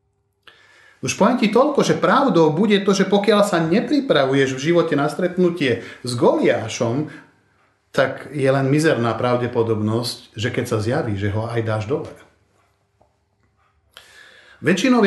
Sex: male